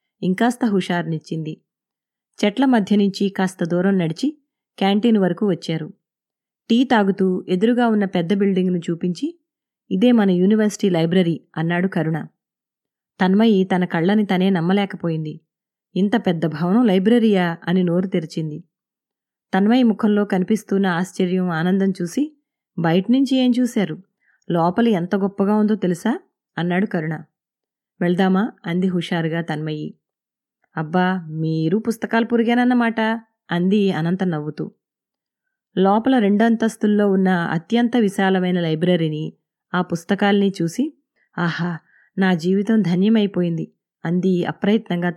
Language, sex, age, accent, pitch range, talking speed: Telugu, female, 20-39, native, 175-220 Hz, 100 wpm